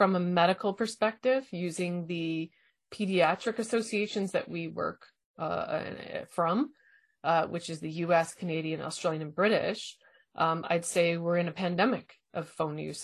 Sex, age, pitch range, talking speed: female, 30-49, 165-205 Hz, 145 wpm